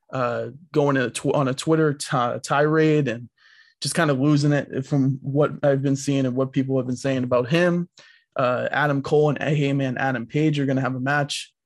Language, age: English, 20-39